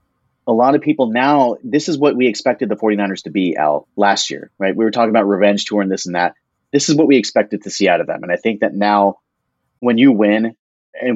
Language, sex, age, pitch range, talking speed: English, male, 30-49, 95-115 Hz, 255 wpm